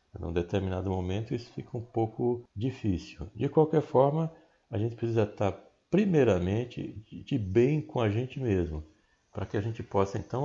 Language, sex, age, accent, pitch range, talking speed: Portuguese, male, 60-79, Brazilian, 95-120 Hz, 160 wpm